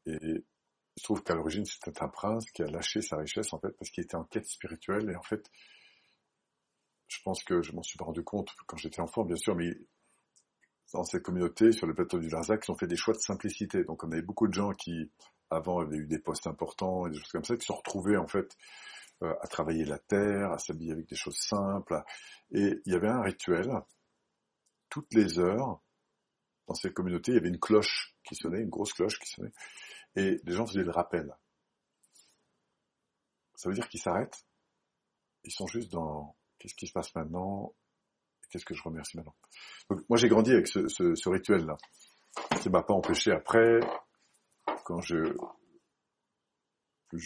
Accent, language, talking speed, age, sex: French, French, 195 wpm, 50-69, male